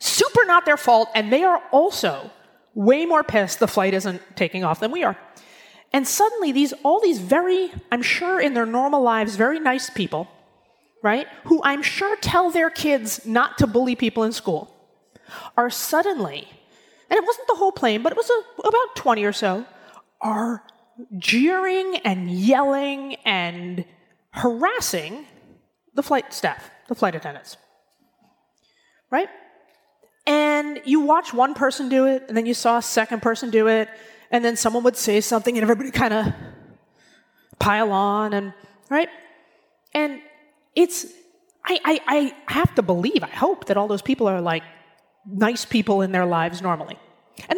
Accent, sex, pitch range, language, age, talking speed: American, female, 215-305 Hz, English, 30-49, 165 wpm